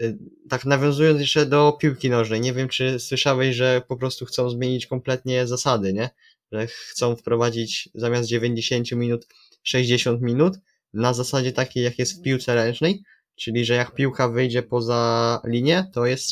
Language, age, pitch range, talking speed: Polish, 20-39, 125-145 Hz, 155 wpm